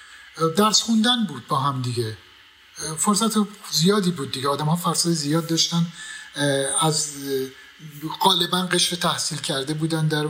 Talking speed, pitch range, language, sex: 130 wpm, 135-175 Hz, Persian, male